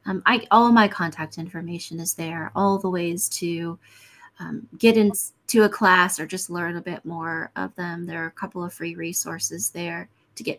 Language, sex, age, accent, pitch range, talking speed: English, female, 30-49, American, 160-200 Hz, 205 wpm